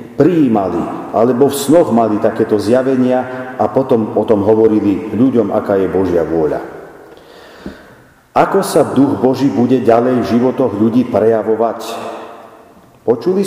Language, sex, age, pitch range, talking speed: Slovak, male, 50-69, 115-175 Hz, 125 wpm